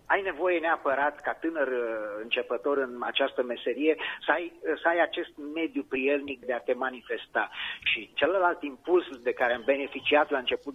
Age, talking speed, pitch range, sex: 30-49, 160 wpm, 130-160 Hz, male